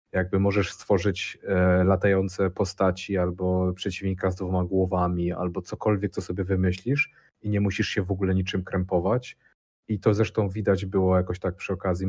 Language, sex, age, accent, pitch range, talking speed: Polish, male, 30-49, native, 95-105 Hz, 160 wpm